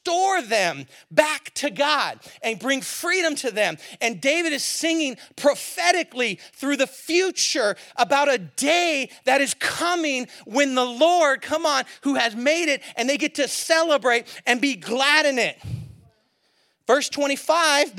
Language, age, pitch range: English, 40-59, 245-315 Hz